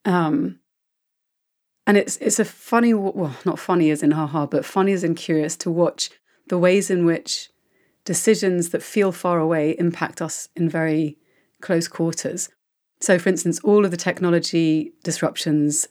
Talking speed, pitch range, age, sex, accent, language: 160 wpm, 160-185 Hz, 30-49, female, British, English